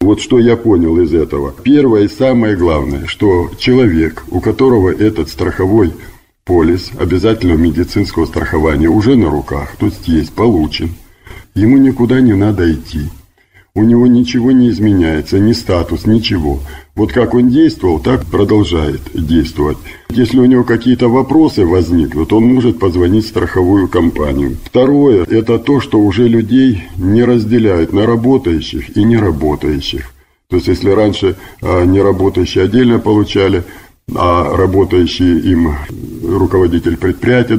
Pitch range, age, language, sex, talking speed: 85-115 Hz, 50-69, Russian, male, 135 wpm